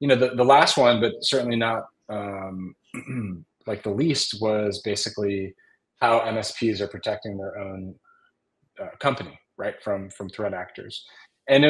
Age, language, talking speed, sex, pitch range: 30-49, English, 155 wpm, male, 100-120 Hz